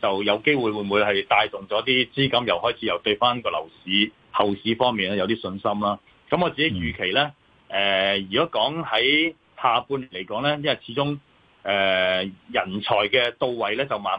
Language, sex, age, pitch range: Chinese, male, 30-49, 100-130 Hz